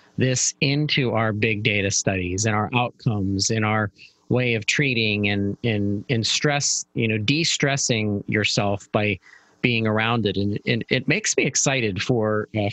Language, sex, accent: English, male, American